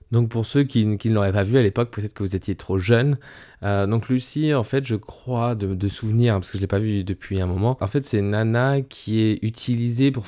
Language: French